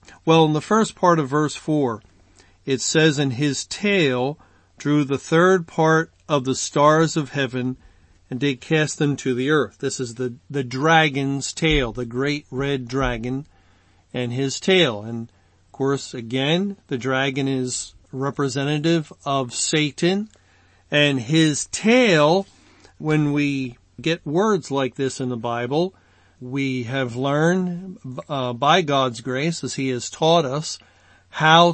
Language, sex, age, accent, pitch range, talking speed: English, male, 40-59, American, 125-160 Hz, 145 wpm